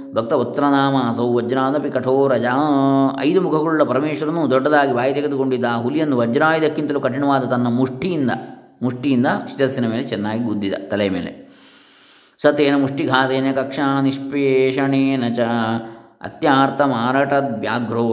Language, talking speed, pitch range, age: Kannada, 105 wpm, 120-140 Hz, 20-39